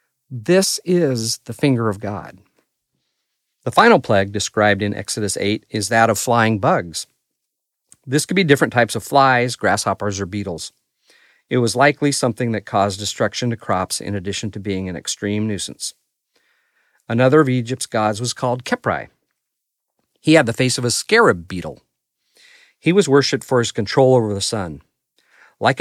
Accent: American